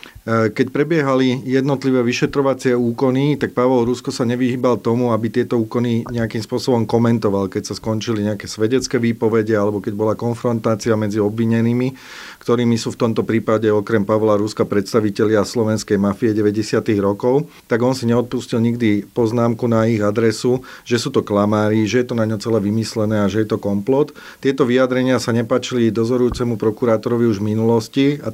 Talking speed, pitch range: 165 wpm, 110-125 Hz